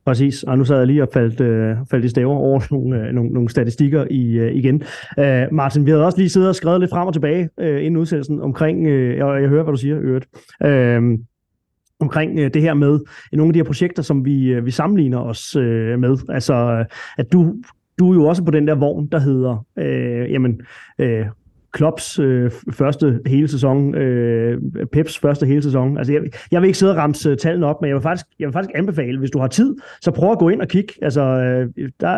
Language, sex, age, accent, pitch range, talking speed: Danish, male, 30-49, native, 130-160 Hz, 225 wpm